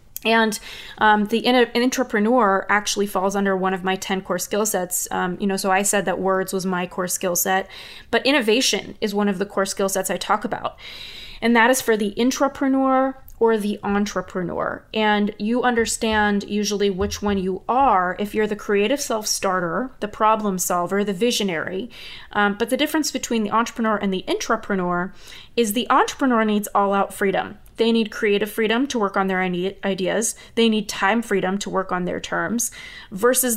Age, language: 20-39, English